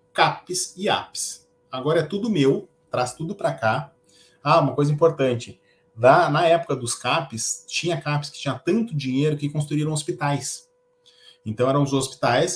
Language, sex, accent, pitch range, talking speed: Portuguese, male, Brazilian, 120-165 Hz, 160 wpm